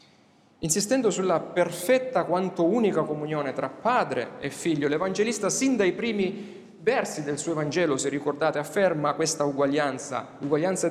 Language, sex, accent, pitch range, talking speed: Italian, male, native, 140-180 Hz, 130 wpm